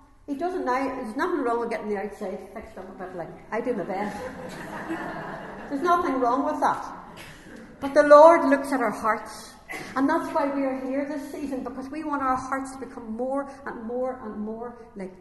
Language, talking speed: English, 205 wpm